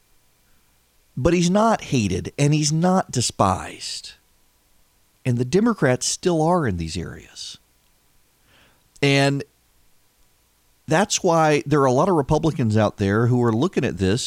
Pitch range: 115-170 Hz